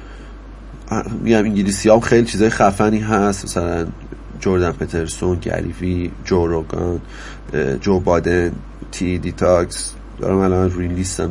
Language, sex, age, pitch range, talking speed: Persian, male, 30-49, 90-110 Hz, 105 wpm